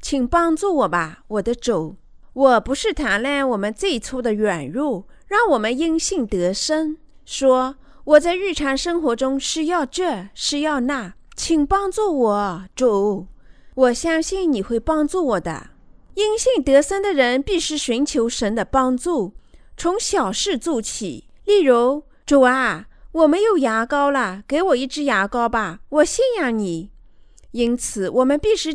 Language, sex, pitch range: Chinese, female, 225-325 Hz